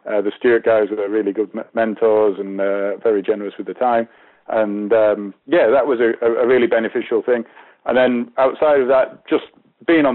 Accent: British